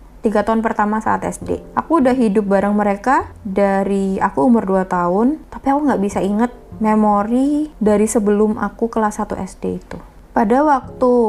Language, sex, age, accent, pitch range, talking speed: Indonesian, female, 20-39, native, 190-235 Hz, 160 wpm